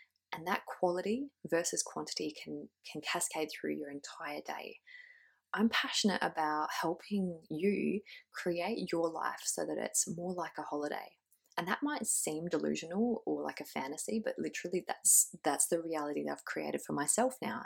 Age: 20-39